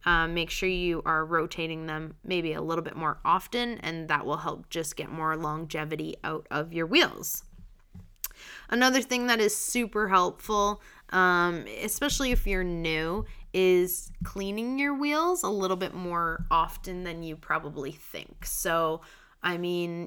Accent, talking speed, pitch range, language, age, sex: American, 155 wpm, 170-210 Hz, English, 20-39, female